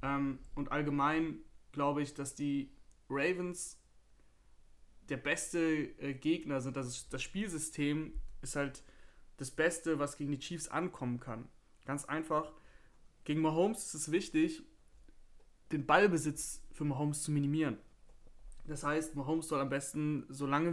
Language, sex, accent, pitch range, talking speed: German, male, German, 135-155 Hz, 125 wpm